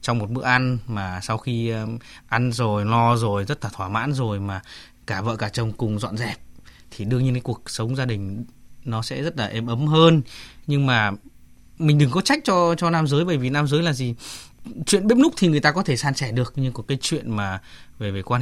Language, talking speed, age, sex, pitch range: Vietnamese, 240 wpm, 20-39, male, 120-165 Hz